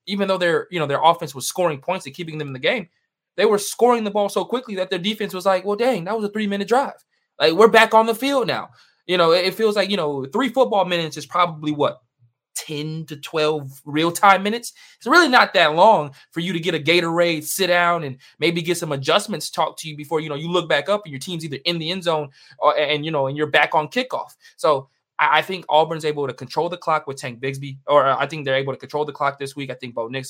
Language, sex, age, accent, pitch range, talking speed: English, male, 20-39, American, 130-175 Hz, 265 wpm